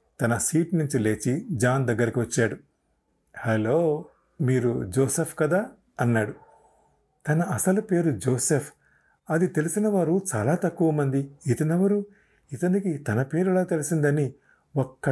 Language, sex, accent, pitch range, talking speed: Telugu, male, native, 115-155 Hz, 105 wpm